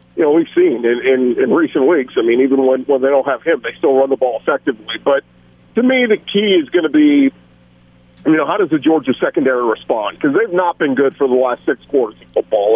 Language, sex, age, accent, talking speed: English, male, 50-69, American, 250 wpm